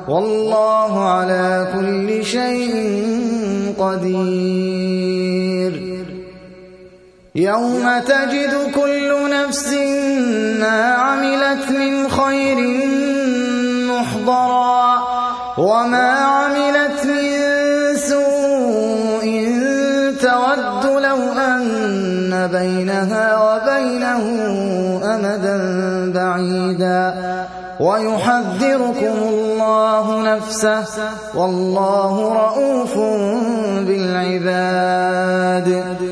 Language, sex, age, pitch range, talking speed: Arabic, male, 20-39, 185-250 Hz, 50 wpm